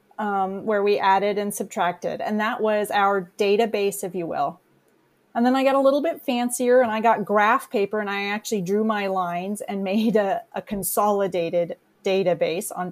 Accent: American